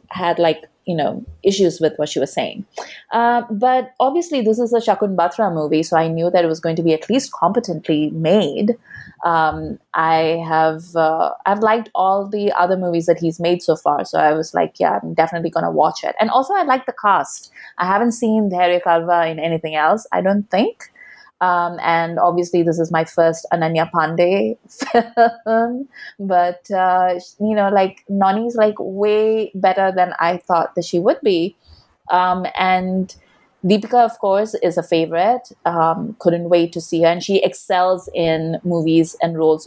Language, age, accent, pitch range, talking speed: English, 20-39, Indian, 160-205 Hz, 185 wpm